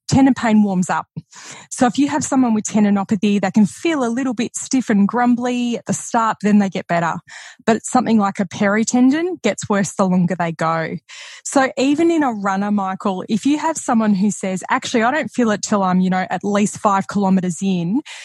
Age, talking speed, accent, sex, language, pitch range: 20-39, 215 wpm, Australian, female, English, 195-235 Hz